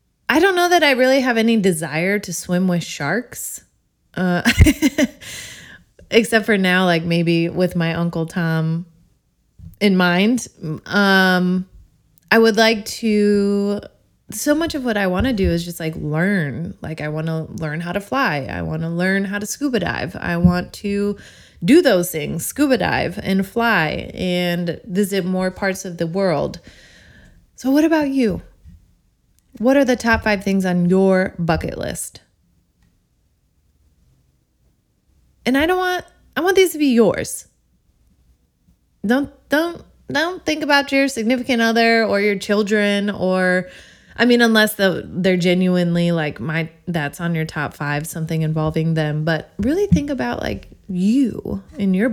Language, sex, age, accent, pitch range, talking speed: English, female, 20-39, American, 165-225 Hz, 155 wpm